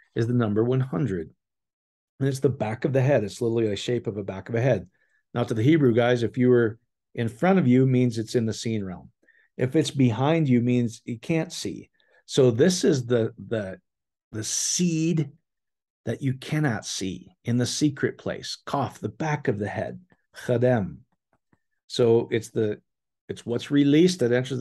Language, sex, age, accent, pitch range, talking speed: English, male, 40-59, American, 115-145 Hz, 190 wpm